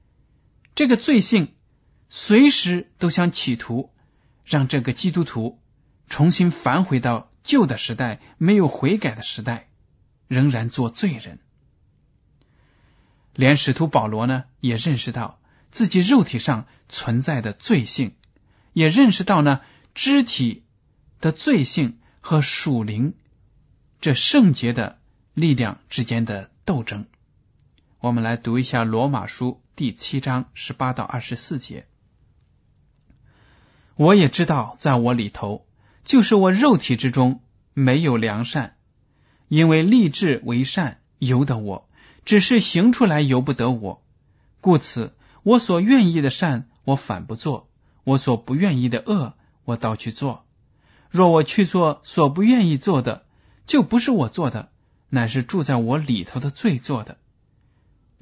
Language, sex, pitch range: Chinese, male, 120-170 Hz